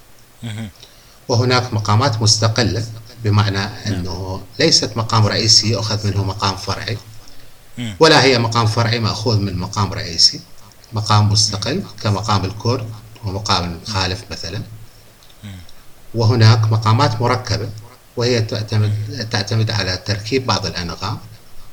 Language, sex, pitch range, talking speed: Arabic, male, 105-130 Hz, 100 wpm